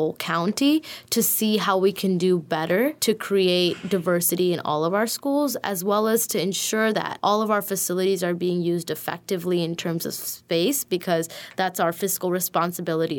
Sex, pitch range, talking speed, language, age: female, 170-205 Hz, 175 wpm, English, 20-39